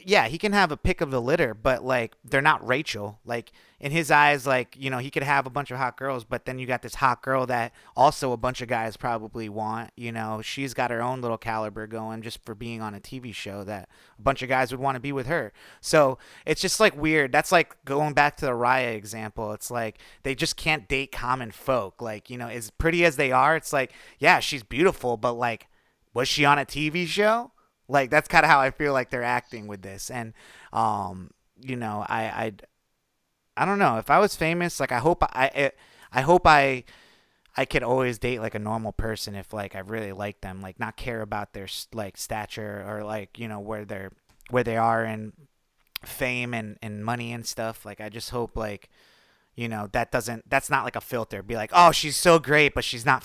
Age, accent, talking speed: 30-49, American, 230 wpm